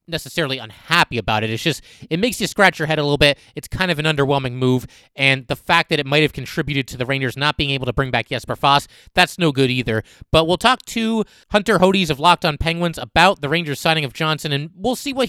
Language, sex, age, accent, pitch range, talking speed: English, male, 30-49, American, 130-175 Hz, 250 wpm